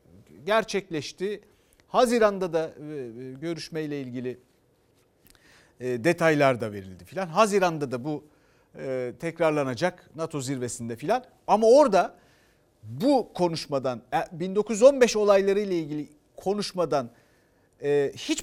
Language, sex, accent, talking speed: Turkish, male, native, 85 wpm